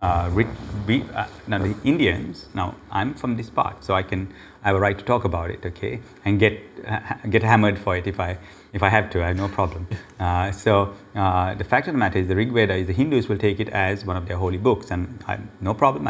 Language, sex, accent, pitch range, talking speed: English, male, Indian, 95-115 Hz, 255 wpm